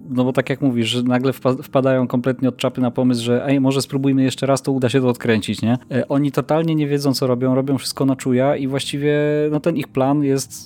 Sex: male